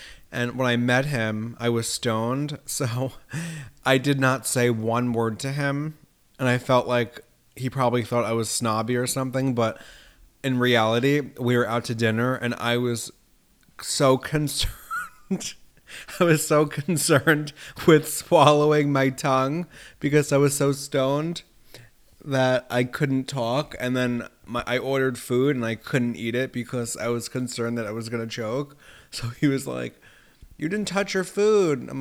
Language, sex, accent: English, male, American